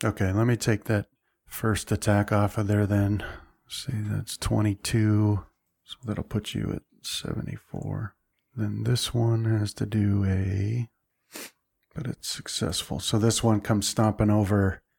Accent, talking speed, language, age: American, 145 wpm, English, 40-59